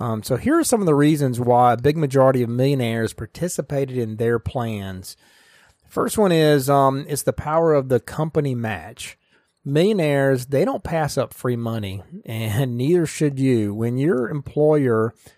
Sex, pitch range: male, 115-150 Hz